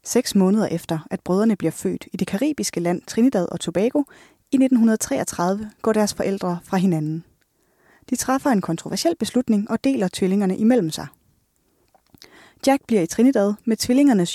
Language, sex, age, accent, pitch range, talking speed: Danish, female, 20-39, native, 180-225 Hz, 155 wpm